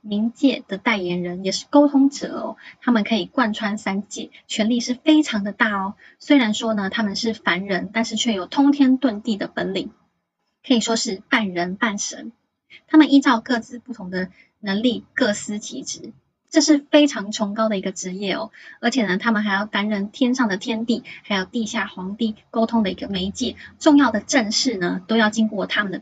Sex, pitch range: female, 200-250 Hz